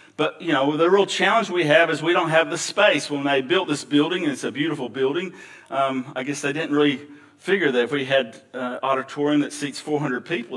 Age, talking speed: 50-69, 235 wpm